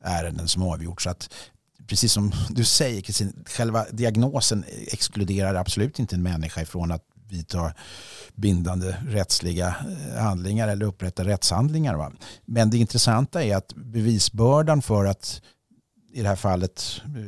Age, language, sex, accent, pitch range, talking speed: 50-69, Swedish, male, native, 90-115 Hz, 140 wpm